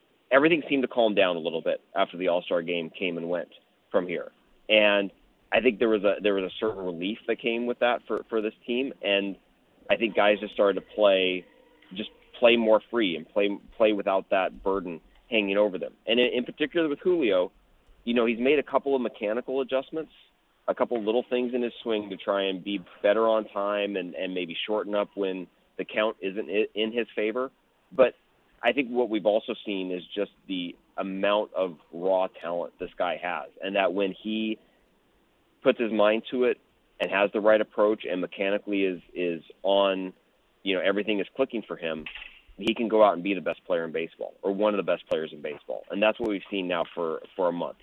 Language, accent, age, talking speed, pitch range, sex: English, American, 30-49, 215 wpm, 95-115 Hz, male